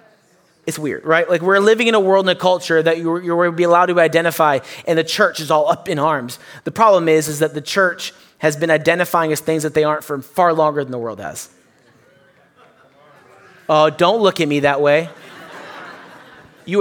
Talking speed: 205 wpm